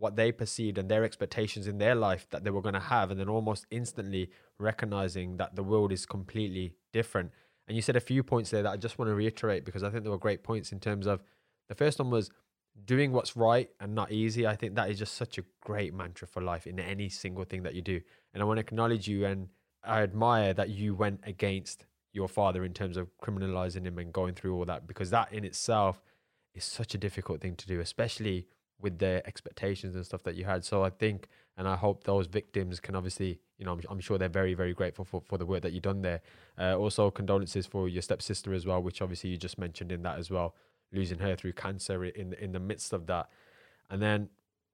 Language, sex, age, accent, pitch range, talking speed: English, male, 20-39, British, 95-110 Hz, 240 wpm